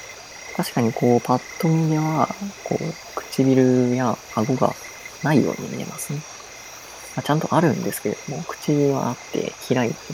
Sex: female